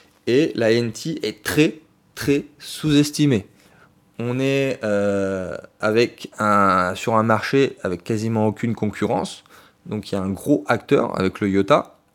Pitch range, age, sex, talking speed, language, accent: 105-145 Hz, 20-39, male, 140 wpm, French, French